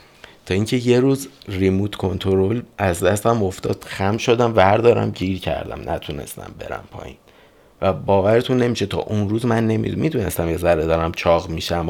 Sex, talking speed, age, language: male, 150 wpm, 50-69, Persian